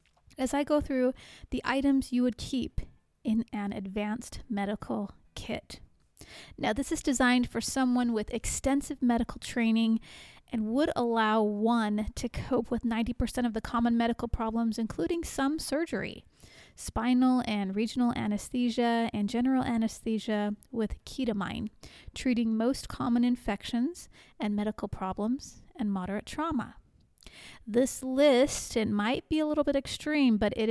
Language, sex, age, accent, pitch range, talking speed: English, female, 30-49, American, 215-260 Hz, 135 wpm